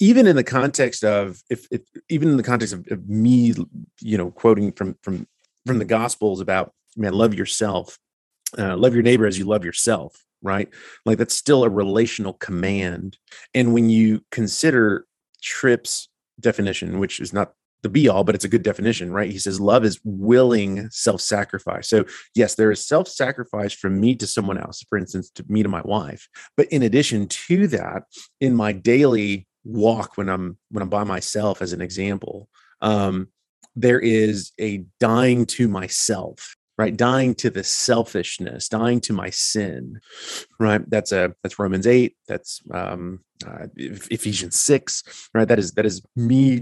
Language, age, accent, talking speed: English, 30-49, American, 170 wpm